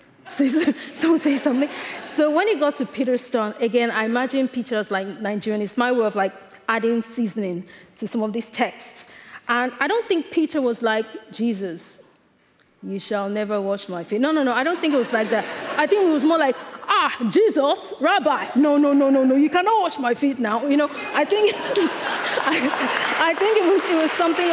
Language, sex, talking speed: English, female, 210 wpm